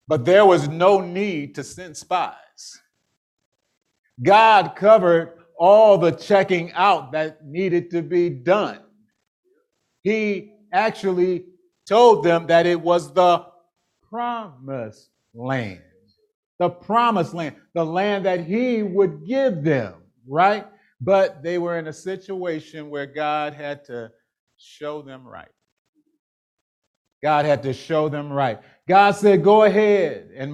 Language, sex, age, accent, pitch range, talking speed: English, male, 50-69, American, 145-190 Hz, 125 wpm